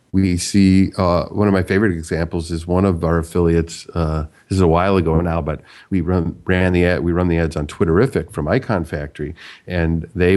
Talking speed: 190 wpm